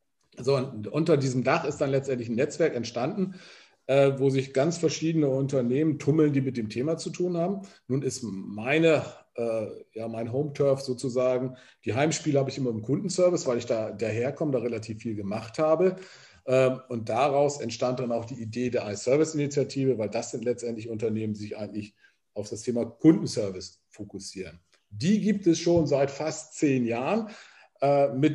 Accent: German